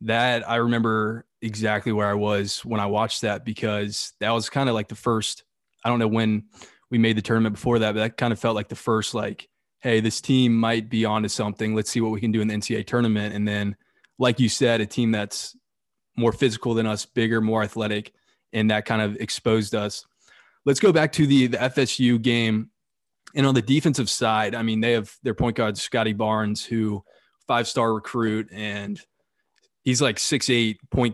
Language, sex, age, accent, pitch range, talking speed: English, male, 20-39, American, 105-120 Hz, 205 wpm